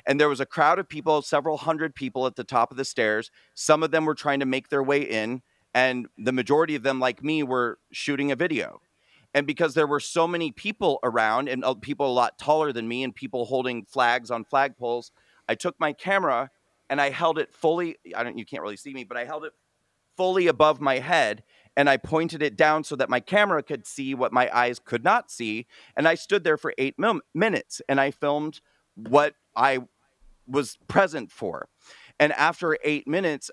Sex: male